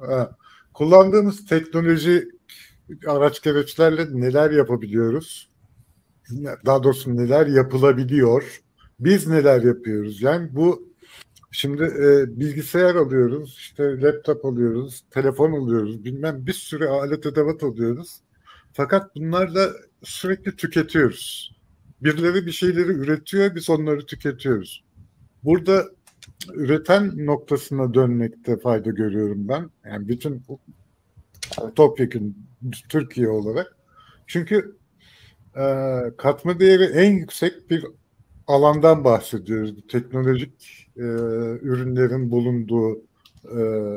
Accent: native